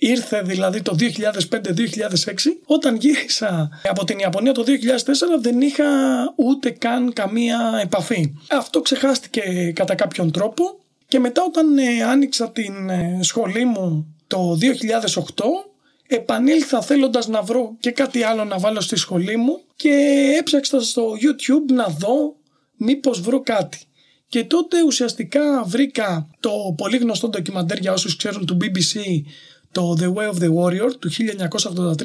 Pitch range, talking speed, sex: 185-265 Hz, 135 wpm, male